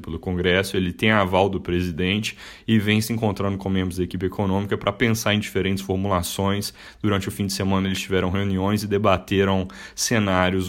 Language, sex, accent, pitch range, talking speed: Portuguese, male, Brazilian, 90-105 Hz, 185 wpm